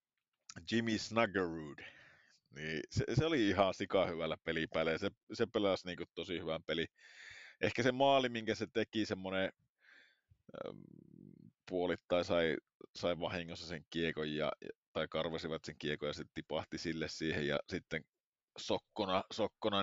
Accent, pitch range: native, 85-115 Hz